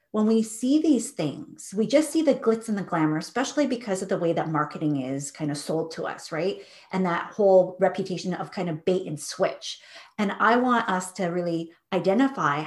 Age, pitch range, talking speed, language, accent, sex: 40-59, 175-220 Hz, 210 wpm, English, American, female